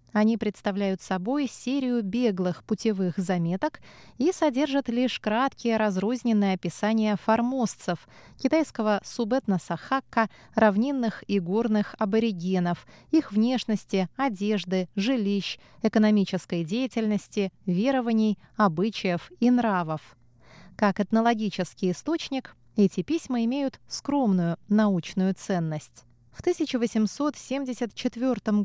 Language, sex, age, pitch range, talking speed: Russian, female, 20-39, 195-255 Hz, 85 wpm